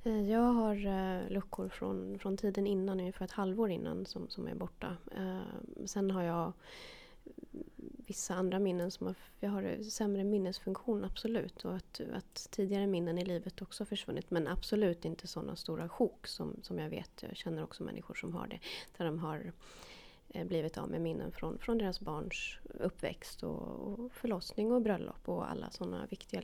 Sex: female